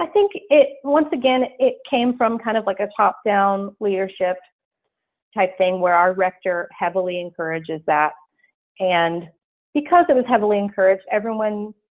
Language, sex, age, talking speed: English, female, 30-49, 145 wpm